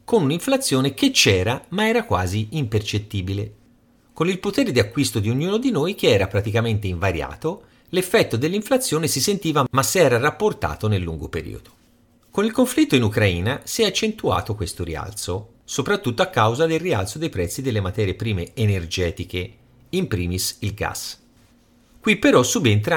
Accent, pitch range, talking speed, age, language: native, 100-140 Hz, 155 wpm, 40-59, Italian